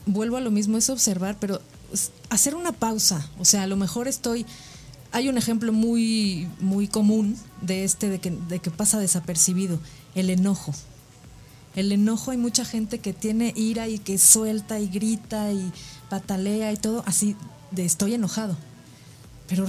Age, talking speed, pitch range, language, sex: 30-49, 160 wpm, 175-225 Hz, Spanish, female